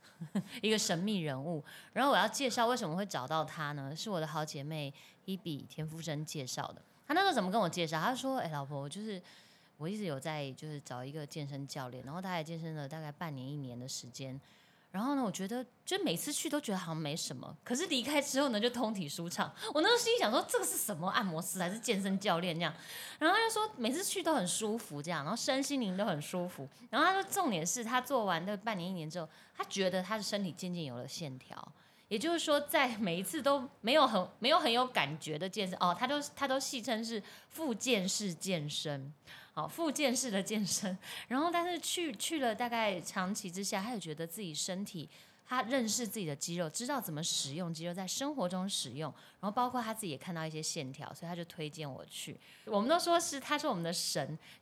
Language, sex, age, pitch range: Chinese, female, 10-29, 160-250 Hz